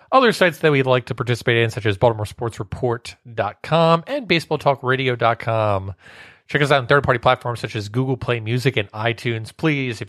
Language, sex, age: English, male, 30-49